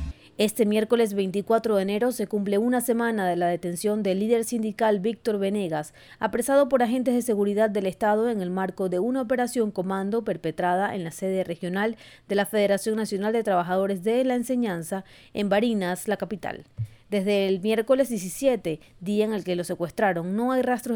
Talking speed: 180 wpm